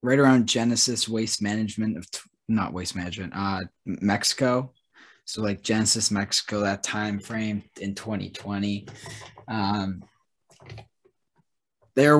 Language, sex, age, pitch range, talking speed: English, male, 20-39, 95-115 Hz, 115 wpm